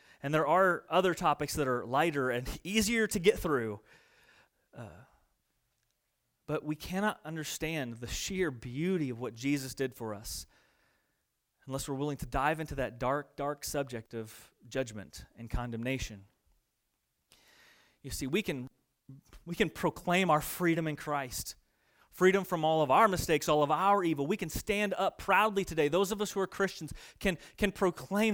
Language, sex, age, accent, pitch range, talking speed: English, male, 30-49, American, 125-190 Hz, 160 wpm